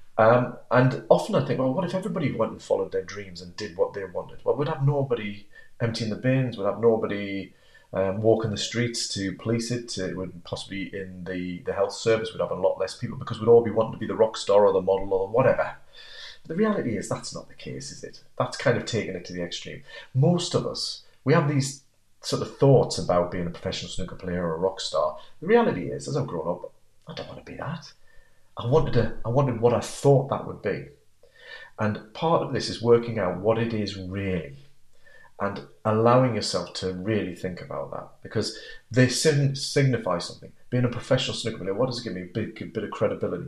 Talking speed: 230 wpm